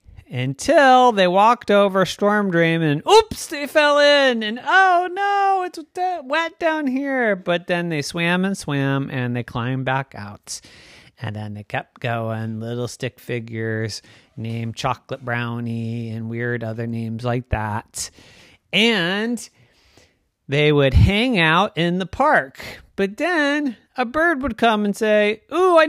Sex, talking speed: male, 150 wpm